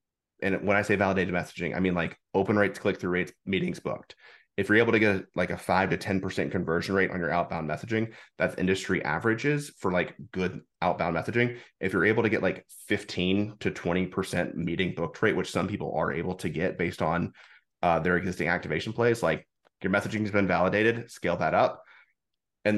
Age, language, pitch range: 30-49, English, 90-100 Hz